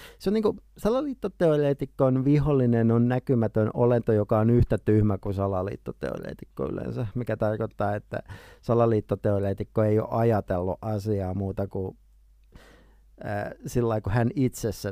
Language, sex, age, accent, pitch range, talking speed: Finnish, male, 50-69, native, 100-125 Hz, 120 wpm